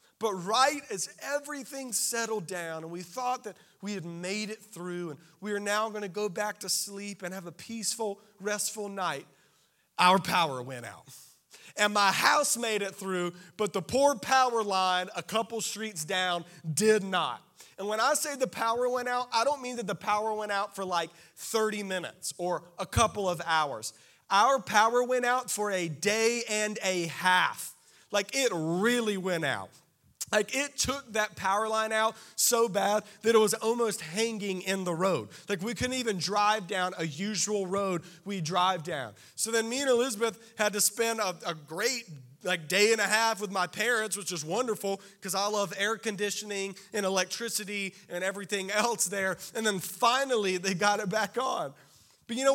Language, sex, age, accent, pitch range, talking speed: English, male, 40-59, American, 185-230 Hz, 190 wpm